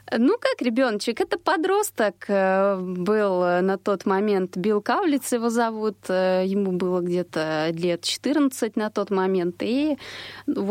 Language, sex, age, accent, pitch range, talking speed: Russian, female, 20-39, native, 170-235 Hz, 125 wpm